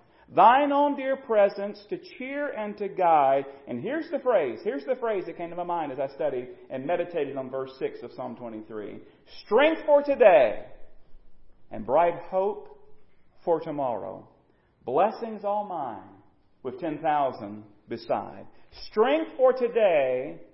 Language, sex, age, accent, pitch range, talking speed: English, male, 40-59, American, 190-295 Hz, 145 wpm